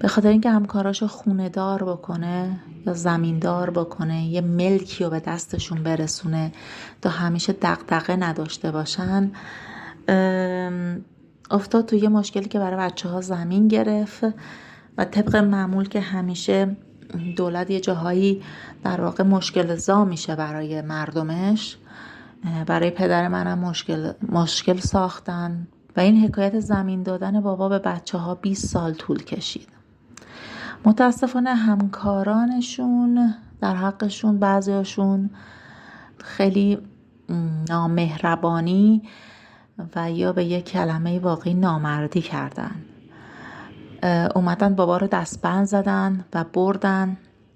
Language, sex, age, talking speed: Persian, female, 30-49, 110 wpm